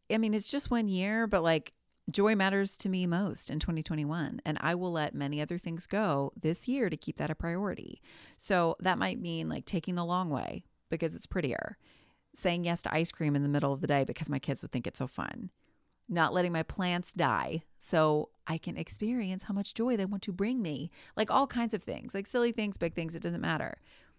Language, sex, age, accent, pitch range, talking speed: English, female, 30-49, American, 155-200 Hz, 225 wpm